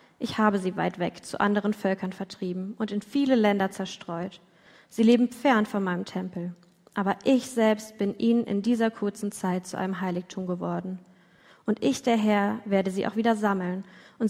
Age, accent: 20-39, German